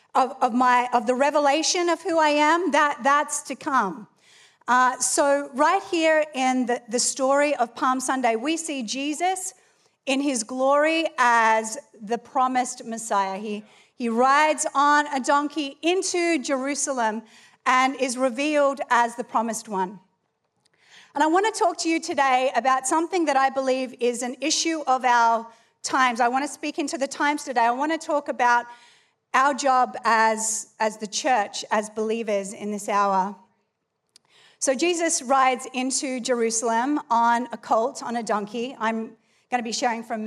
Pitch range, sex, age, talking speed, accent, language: 225-285 Hz, female, 40-59, 165 wpm, Australian, English